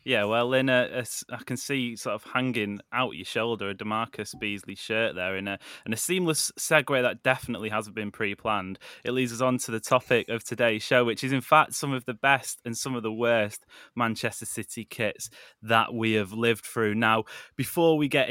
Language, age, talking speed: English, 10-29, 215 wpm